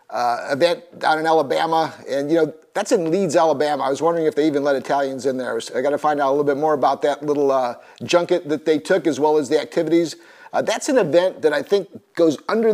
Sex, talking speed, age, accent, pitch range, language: male, 250 wpm, 50-69, American, 145-175 Hz, English